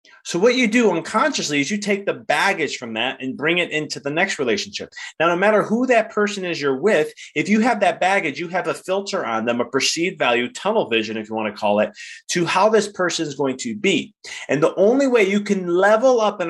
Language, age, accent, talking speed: English, 30-49, American, 245 wpm